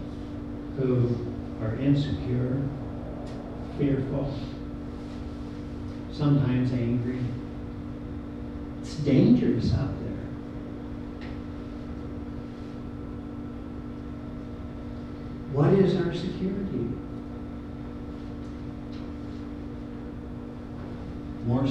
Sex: male